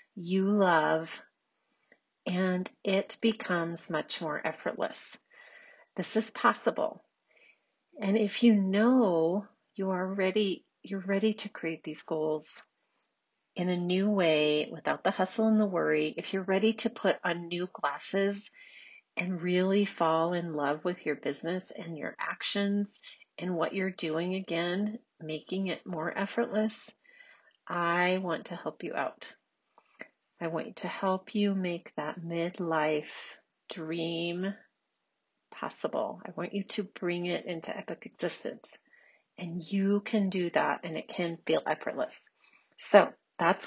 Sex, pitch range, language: female, 170-205 Hz, English